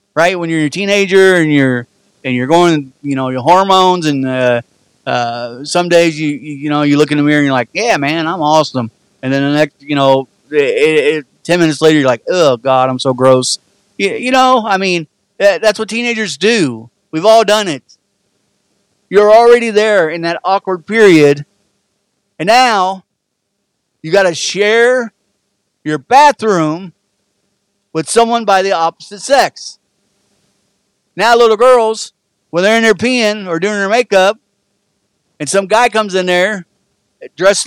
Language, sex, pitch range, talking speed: English, male, 150-225 Hz, 170 wpm